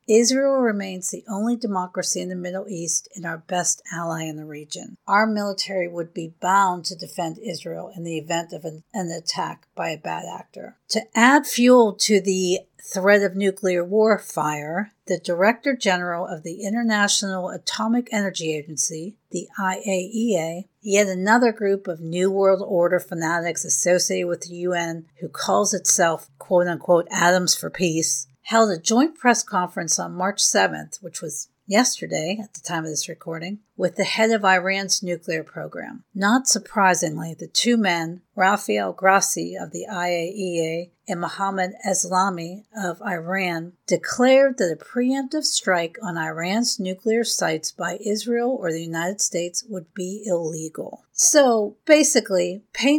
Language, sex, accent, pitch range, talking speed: English, female, American, 170-210 Hz, 150 wpm